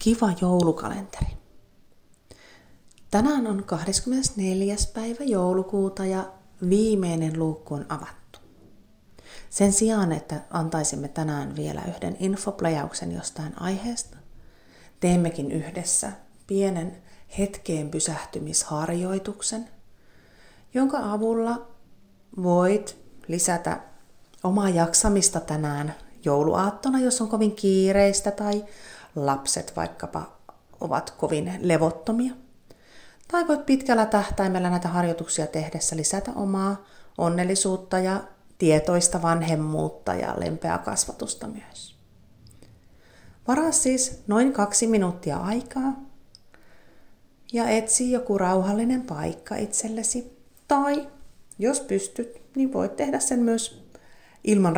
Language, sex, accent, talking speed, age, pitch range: Finnish, female, native, 90 wpm, 30-49, 165-225 Hz